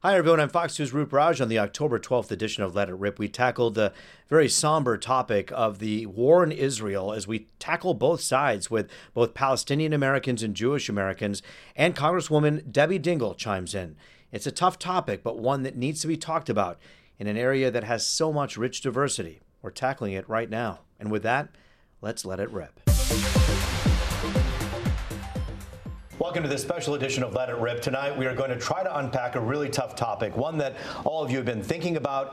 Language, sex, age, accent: English, male, 40-59, American